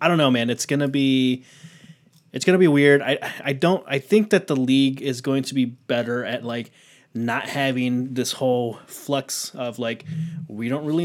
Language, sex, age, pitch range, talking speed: English, male, 20-39, 125-145 Hz, 195 wpm